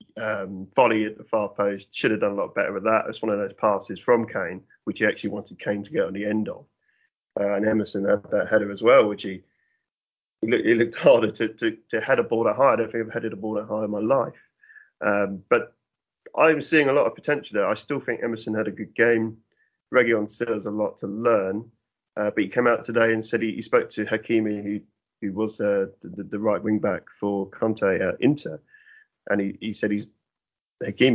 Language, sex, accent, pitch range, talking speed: English, male, British, 100-115 Hz, 235 wpm